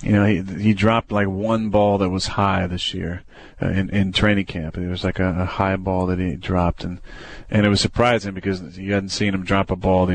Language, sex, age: English, male, 30-49